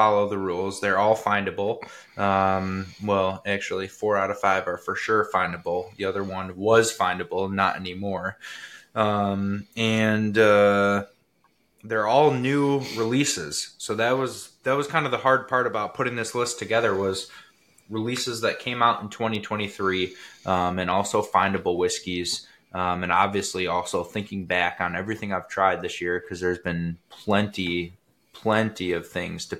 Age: 20-39